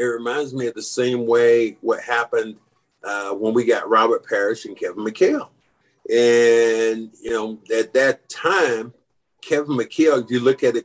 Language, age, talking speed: English, 50-69, 170 wpm